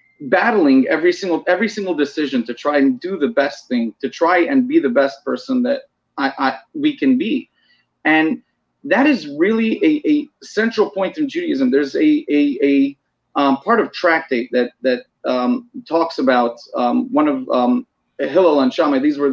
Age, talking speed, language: 30-49, 180 wpm, English